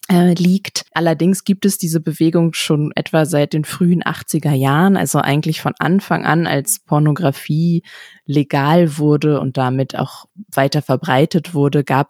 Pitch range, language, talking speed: 140-165 Hz, German, 145 wpm